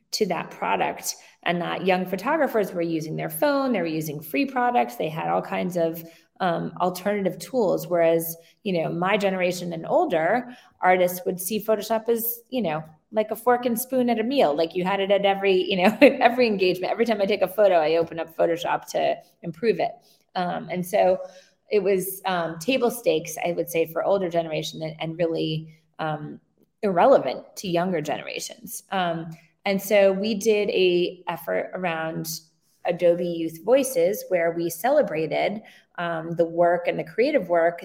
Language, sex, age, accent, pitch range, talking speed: English, female, 20-39, American, 165-220 Hz, 180 wpm